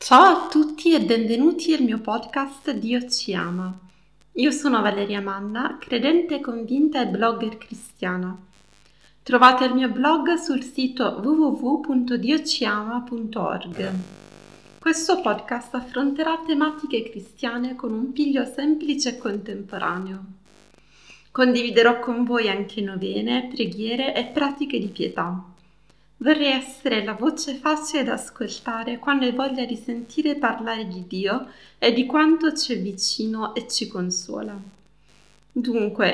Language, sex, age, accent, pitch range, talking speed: Italian, female, 30-49, native, 205-275 Hz, 120 wpm